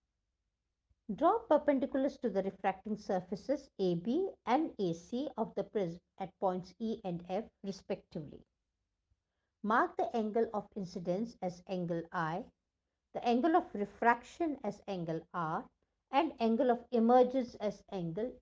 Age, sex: 60-79, female